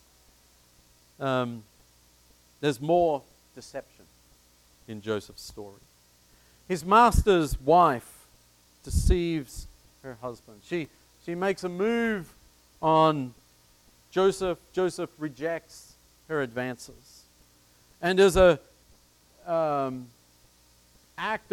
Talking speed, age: 80 wpm, 50-69